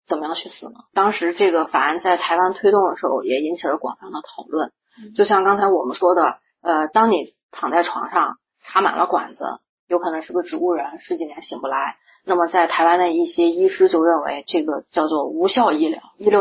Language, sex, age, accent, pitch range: Chinese, female, 30-49, native, 170-250 Hz